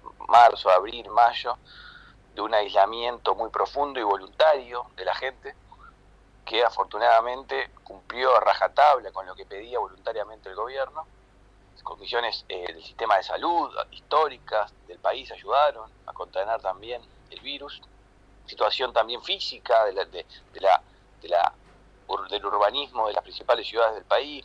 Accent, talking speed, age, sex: Argentinian, 145 wpm, 40-59, male